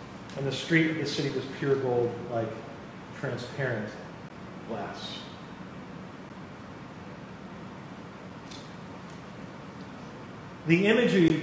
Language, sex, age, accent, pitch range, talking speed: English, male, 40-59, American, 155-210 Hz, 75 wpm